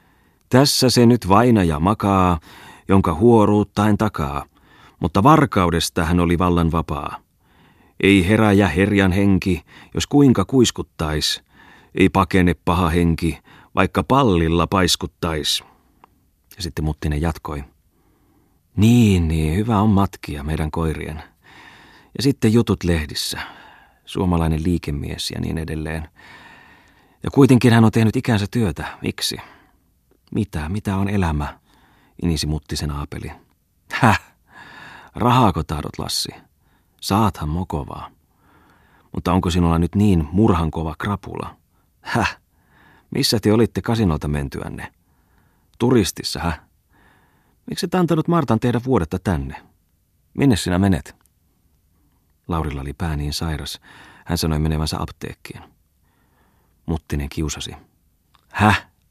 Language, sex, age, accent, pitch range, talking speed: Finnish, male, 30-49, native, 80-105 Hz, 110 wpm